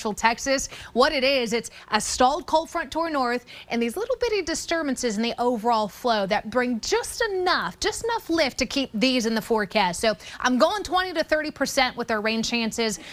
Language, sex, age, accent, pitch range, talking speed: English, female, 20-39, American, 225-280 Hz, 195 wpm